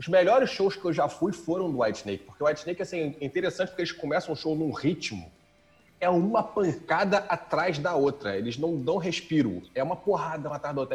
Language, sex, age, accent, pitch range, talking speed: Portuguese, male, 30-49, Brazilian, 155-205 Hz, 220 wpm